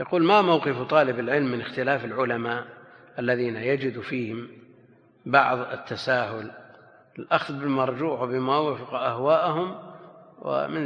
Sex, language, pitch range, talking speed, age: male, Arabic, 120-150 Hz, 105 wpm, 50-69